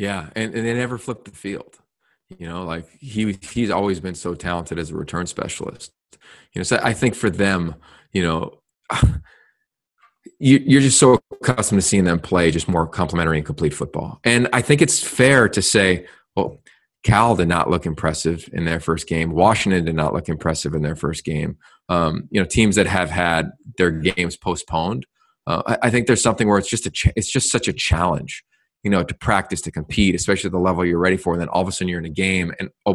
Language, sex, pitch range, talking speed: English, male, 85-115 Hz, 220 wpm